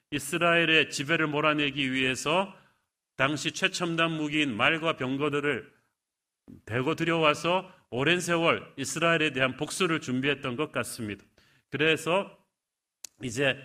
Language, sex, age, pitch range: Korean, male, 40-59, 130-160 Hz